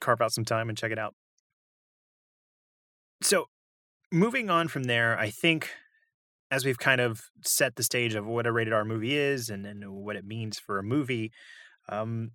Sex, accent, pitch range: male, American, 105-130 Hz